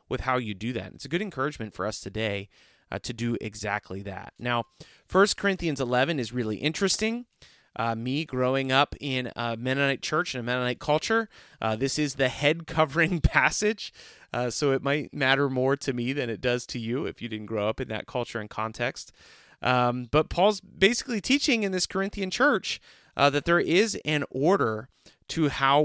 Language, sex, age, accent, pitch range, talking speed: English, male, 30-49, American, 110-140 Hz, 195 wpm